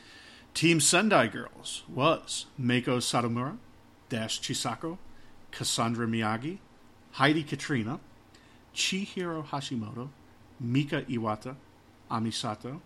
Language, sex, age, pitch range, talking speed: English, male, 50-69, 110-145 Hz, 80 wpm